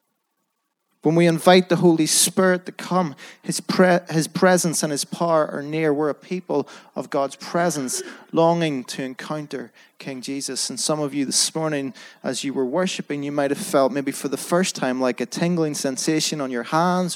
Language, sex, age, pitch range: English, male, 30-49, 140-175 Hz